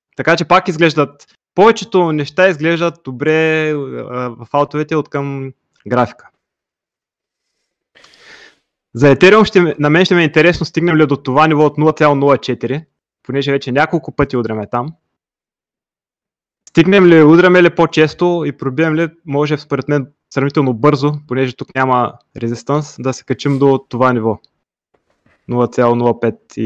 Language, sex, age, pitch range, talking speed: Bulgarian, male, 20-39, 130-160 Hz, 125 wpm